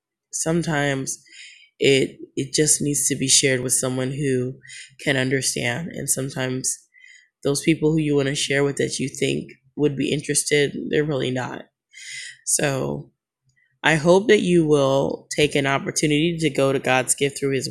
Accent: American